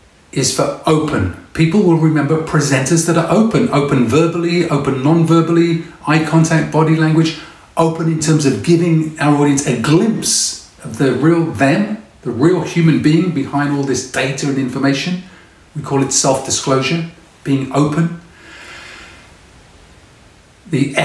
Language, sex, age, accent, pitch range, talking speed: English, male, 40-59, British, 115-160 Hz, 135 wpm